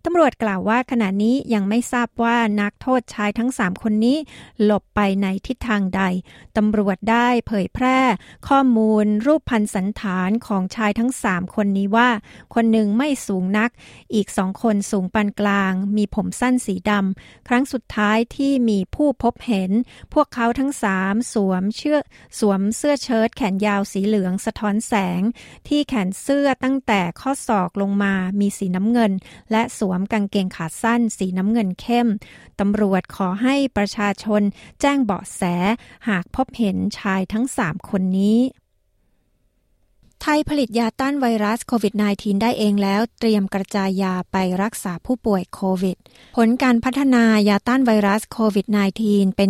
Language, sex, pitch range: Thai, female, 200-240 Hz